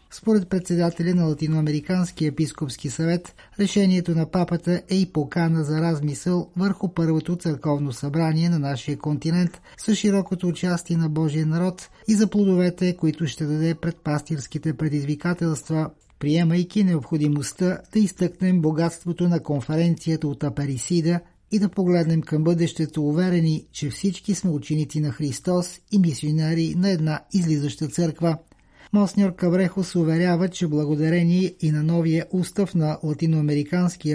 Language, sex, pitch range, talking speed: Bulgarian, male, 155-175 Hz, 130 wpm